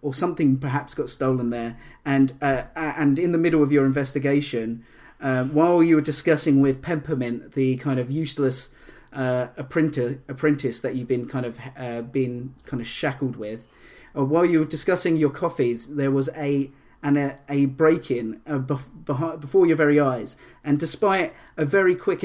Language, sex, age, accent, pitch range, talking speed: English, male, 30-49, British, 130-155 Hz, 175 wpm